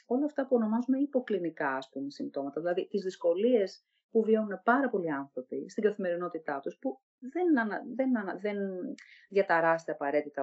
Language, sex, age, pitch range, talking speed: Greek, female, 40-59, 165-225 Hz, 145 wpm